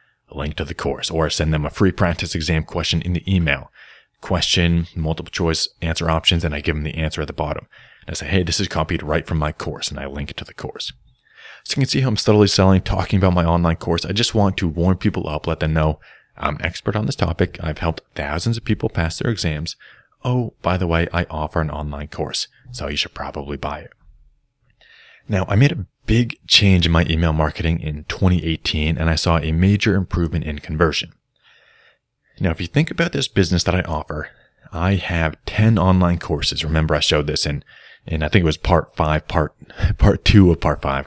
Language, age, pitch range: English, 30-49, 75-95 Hz